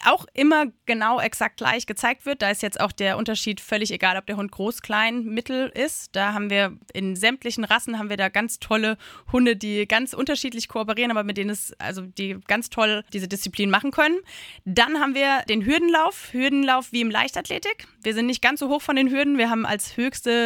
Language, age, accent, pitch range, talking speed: German, 20-39, German, 200-245 Hz, 210 wpm